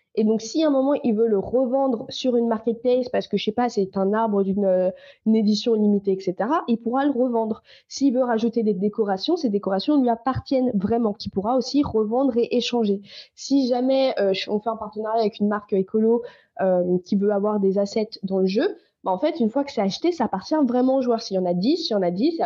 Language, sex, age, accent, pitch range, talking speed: French, female, 20-39, French, 200-250 Hz, 240 wpm